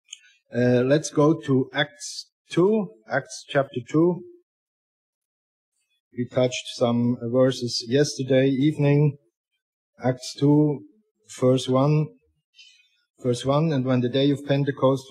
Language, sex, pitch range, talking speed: English, male, 125-150 Hz, 105 wpm